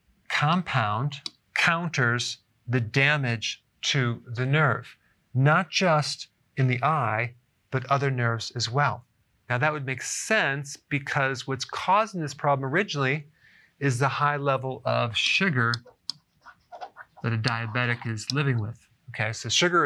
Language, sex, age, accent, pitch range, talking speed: English, male, 40-59, American, 120-145 Hz, 130 wpm